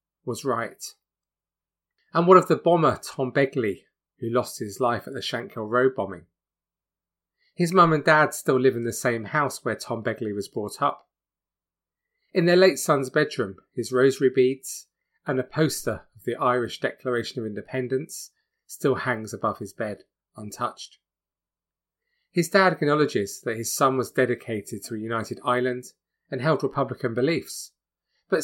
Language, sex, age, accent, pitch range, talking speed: English, male, 30-49, British, 110-155 Hz, 155 wpm